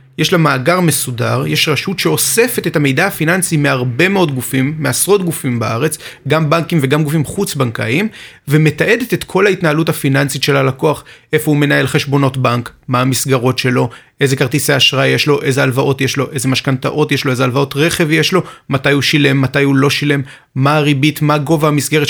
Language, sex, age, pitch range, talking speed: Hebrew, male, 30-49, 130-165 Hz, 175 wpm